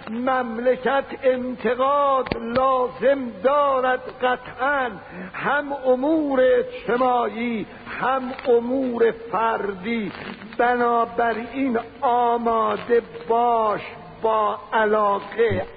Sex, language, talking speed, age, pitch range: male, Persian, 60 wpm, 60-79, 220-270 Hz